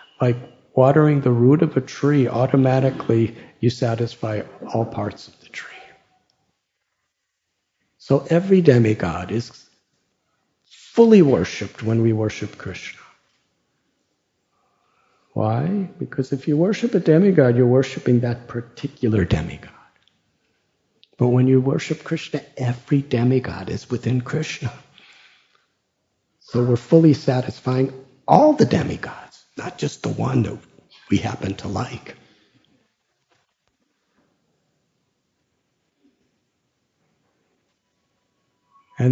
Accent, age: American, 50-69